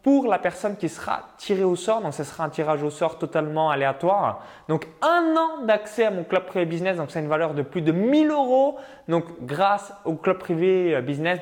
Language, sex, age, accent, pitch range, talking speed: French, male, 20-39, French, 160-225 Hz, 215 wpm